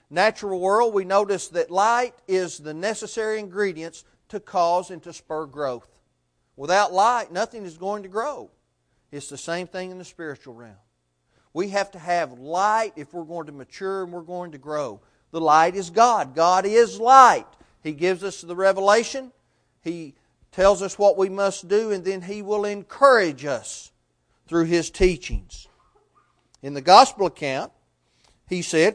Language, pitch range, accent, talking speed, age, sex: English, 150-205 Hz, American, 165 wpm, 40-59, male